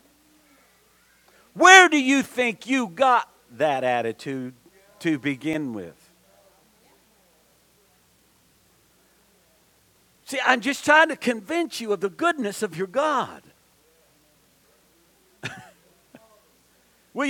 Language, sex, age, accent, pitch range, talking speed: English, male, 50-69, American, 155-235 Hz, 85 wpm